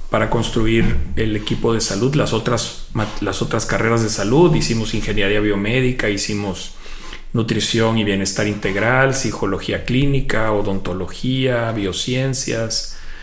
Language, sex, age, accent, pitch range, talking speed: Spanish, male, 40-59, Mexican, 105-120 Hz, 110 wpm